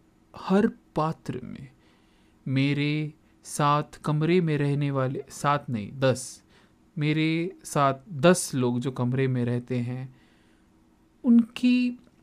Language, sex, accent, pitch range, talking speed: Hindi, male, native, 120-175 Hz, 110 wpm